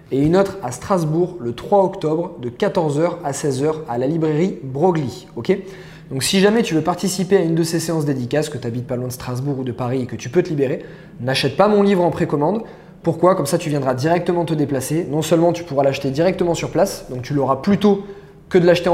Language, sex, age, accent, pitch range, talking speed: French, male, 20-39, French, 140-175 Hz, 240 wpm